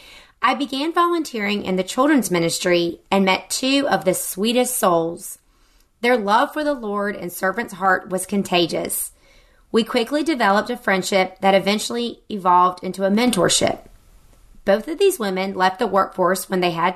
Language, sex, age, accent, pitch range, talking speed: English, female, 30-49, American, 185-245 Hz, 160 wpm